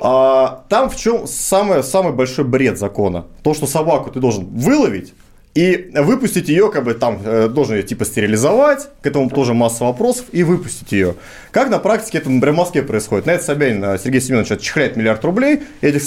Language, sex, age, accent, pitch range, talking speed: Russian, male, 30-49, native, 125-185 Hz, 180 wpm